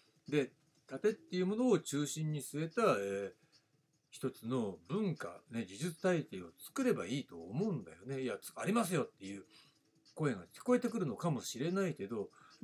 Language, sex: Japanese, male